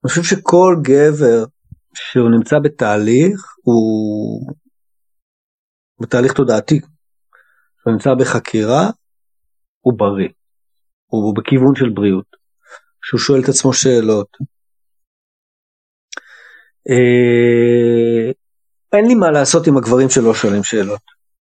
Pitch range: 110-150 Hz